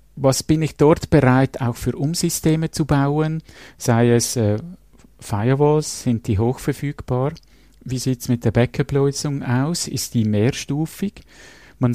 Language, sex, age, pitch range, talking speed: German, male, 50-69, 115-150 Hz, 135 wpm